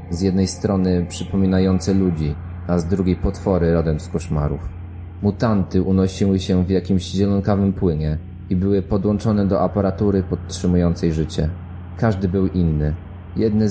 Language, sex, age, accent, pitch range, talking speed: Polish, male, 20-39, native, 85-100 Hz, 130 wpm